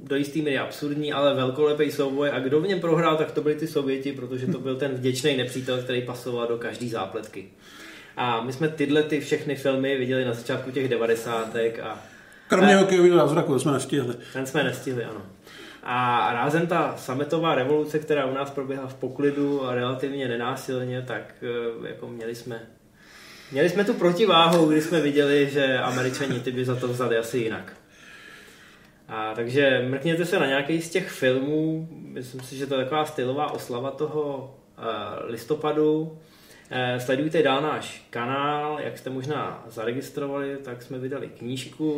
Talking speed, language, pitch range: 165 wpm, Czech, 120-150 Hz